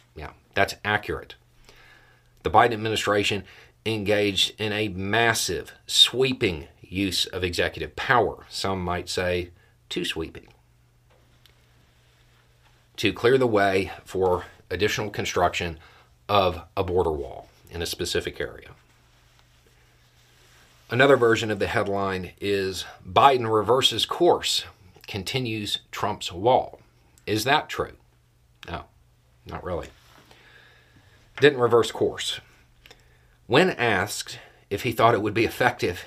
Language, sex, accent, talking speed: English, male, American, 105 wpm